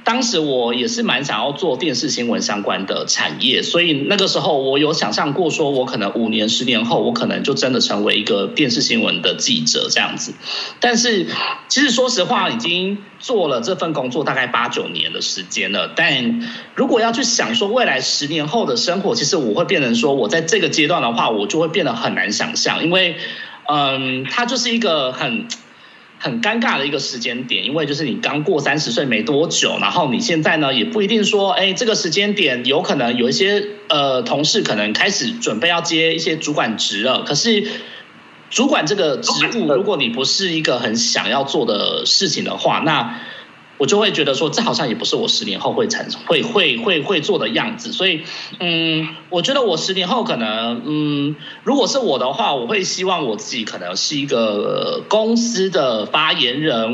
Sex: male